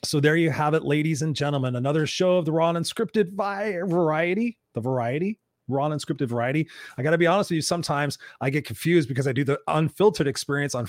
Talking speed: 220 wpm